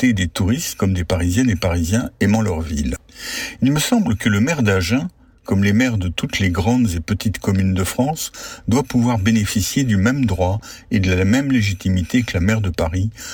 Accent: French